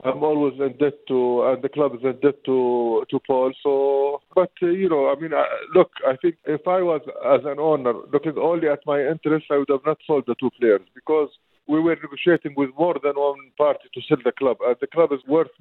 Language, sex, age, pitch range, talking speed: English, male, 50-69, 135-160 Hz, 240 wpm